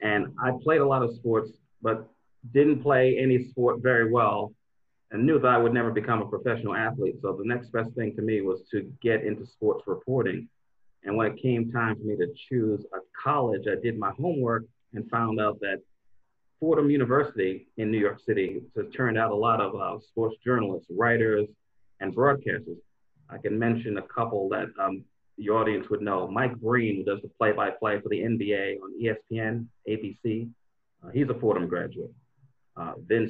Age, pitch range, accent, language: 30-49, 105-125 Hz, American, English